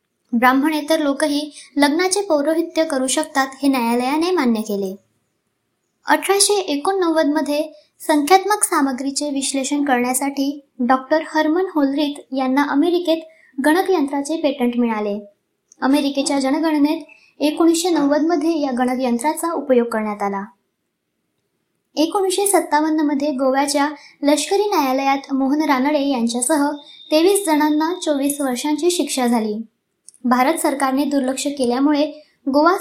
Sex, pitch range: male, 260-315 Hz